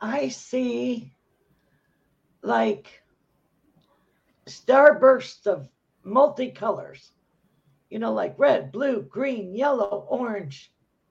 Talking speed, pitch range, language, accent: 75 wpm, 200-260 Hz, English, American